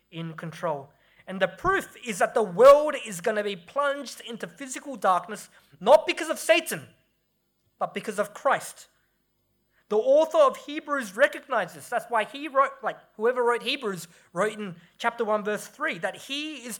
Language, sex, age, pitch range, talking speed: English, male, 20-39, 185-275 Hz, 170 wpm